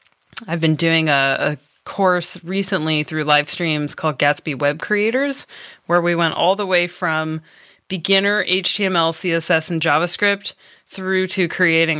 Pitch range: 150-185 Hz